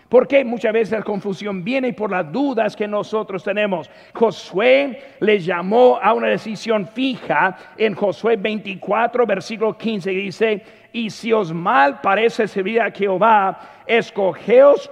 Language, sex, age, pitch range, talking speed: Spanish, male, 50-69, 195-240 Hz, 150 wpm